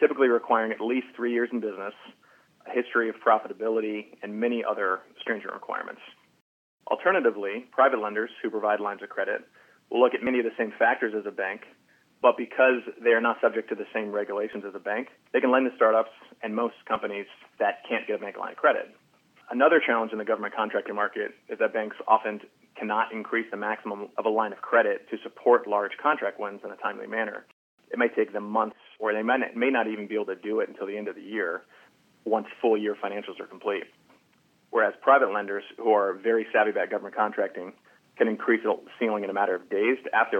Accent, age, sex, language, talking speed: American, 30-49, male, English, 210 wpm